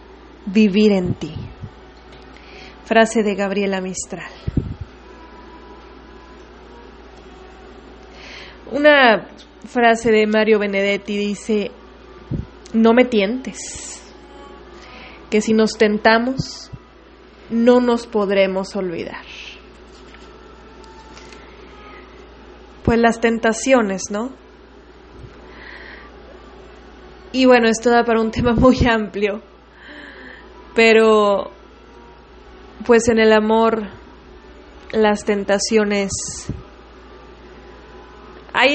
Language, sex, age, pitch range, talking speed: English, female, 20-39, 200-240 Hz, 70 wpm